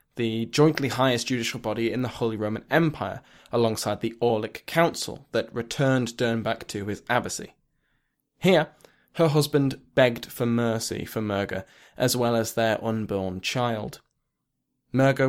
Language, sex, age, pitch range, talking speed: English, male, 20-39, 115-135 Hz, 135 wpm